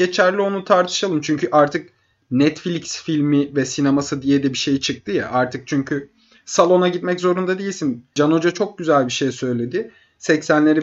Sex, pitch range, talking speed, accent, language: male, 135-180 Hz, 160 wpm, native, Turkish